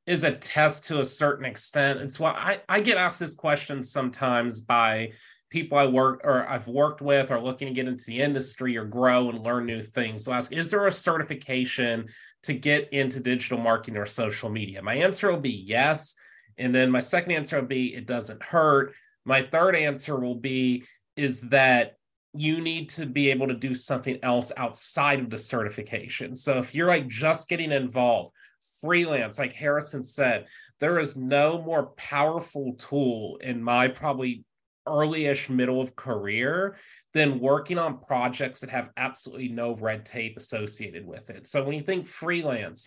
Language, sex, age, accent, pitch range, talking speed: English, male, 30-49, American, 125-145 Hz, 180 wpm